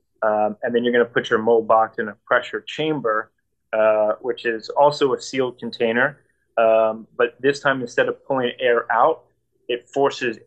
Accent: American